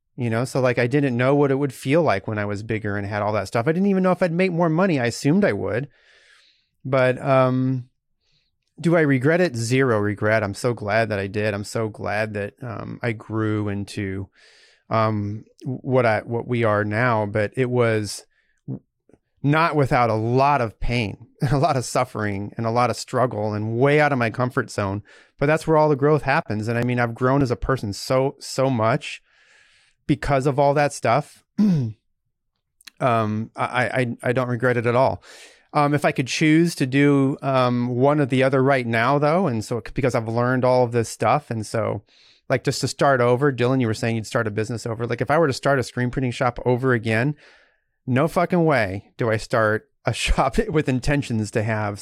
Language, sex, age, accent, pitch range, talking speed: English, male, 30-49, American, 110-140 Hz, 210 wpm